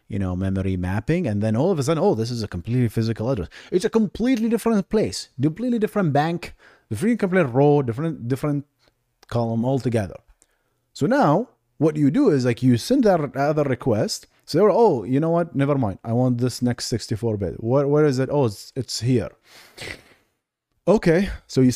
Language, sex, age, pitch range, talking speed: English, male, 30-49, 110-145 Hz, 195 wpm